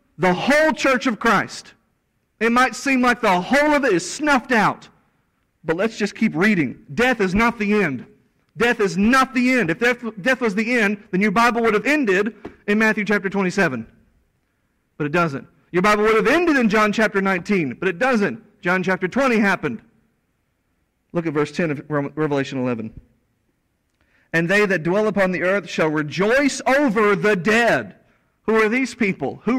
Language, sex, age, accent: English, male, 40-59, American